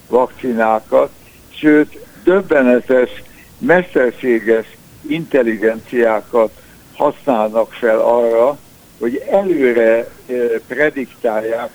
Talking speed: 55 wpm